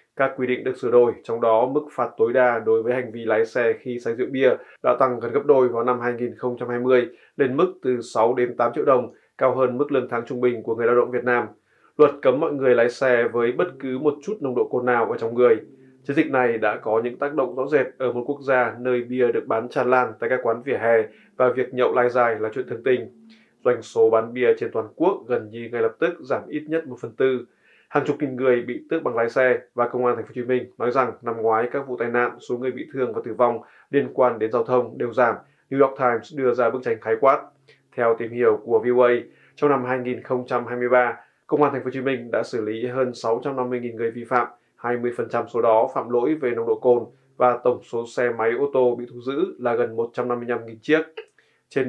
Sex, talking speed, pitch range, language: male, 250 wpm, 120-140 Hz, Vietnamese